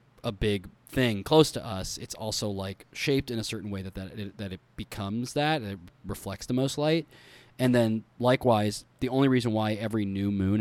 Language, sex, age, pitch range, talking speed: English, male, 20-39, 95-125 Hz, 190 wpm